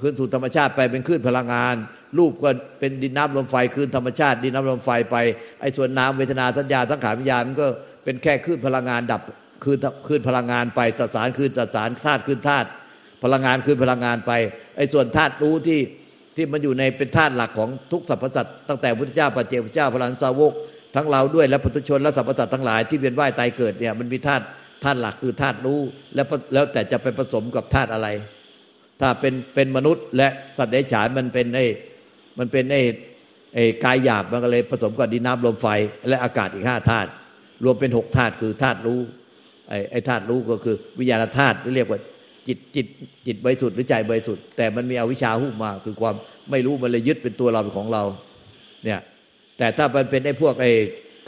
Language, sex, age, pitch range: Thai, male, 60-79, 115-135 Hz